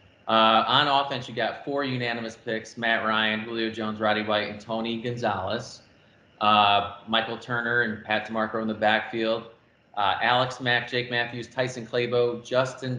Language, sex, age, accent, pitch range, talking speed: English, male, 30-49, American, 110-125 Hz, 160 wpm